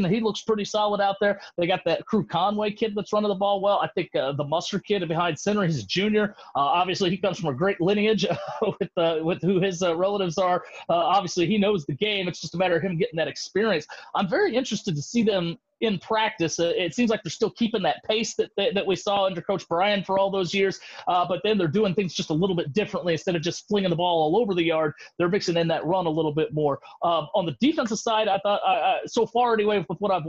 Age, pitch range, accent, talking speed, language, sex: 30-49, 165-205 Hz, American, 260 wpm, English, male